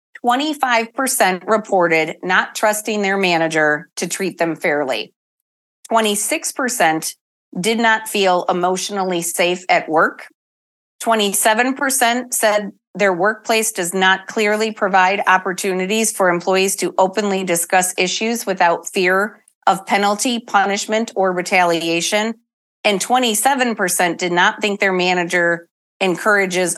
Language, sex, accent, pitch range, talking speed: English, female, American, 180-225 Hz, 105 wpm